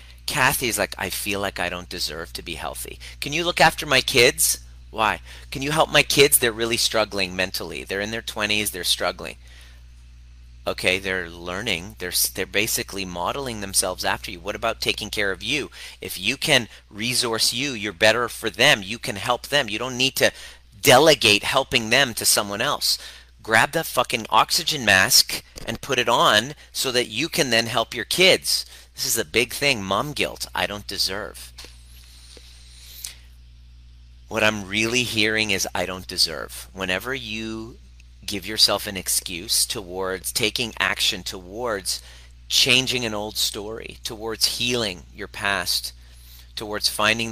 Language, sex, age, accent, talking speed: English, male, 30-49, American, 160 wpm